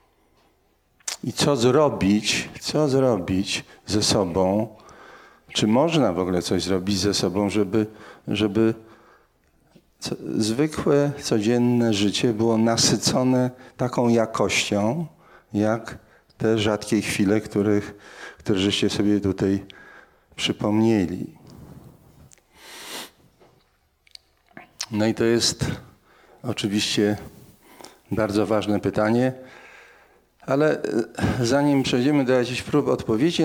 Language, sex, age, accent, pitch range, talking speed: Polish, male, 40-59, native, 100-120 Hz, 85 wpm